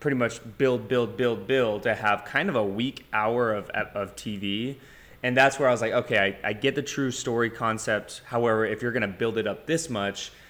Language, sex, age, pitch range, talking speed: English, male, 20-39, 105-125 Hz, 230 wpm